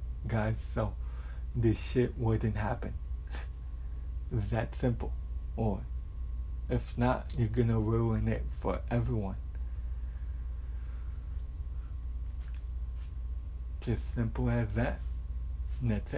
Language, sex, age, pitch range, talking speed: English, male, 60-79, 65-110 Hz, 90 wpm